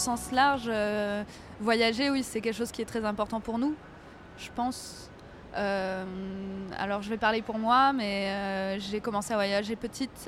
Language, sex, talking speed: French, female, 175 wpm